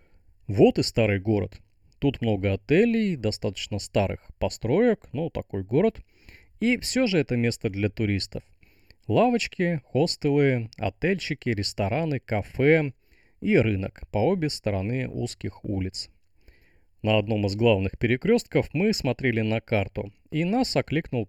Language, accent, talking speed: Russian, native, 125 wpm